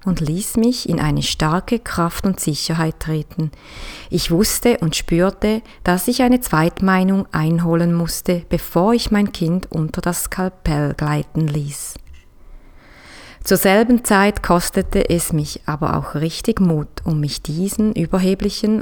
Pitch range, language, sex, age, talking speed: 160-210 Hz, German, female, 30-49, 135 wpm